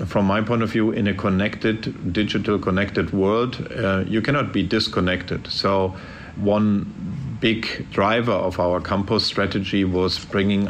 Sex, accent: male, German